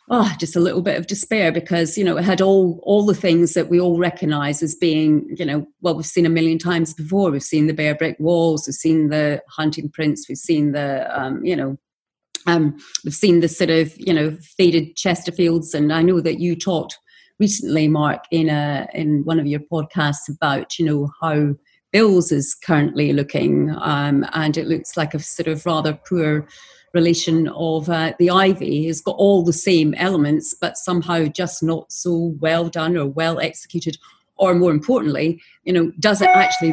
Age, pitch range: 40-59, 155-180 Hz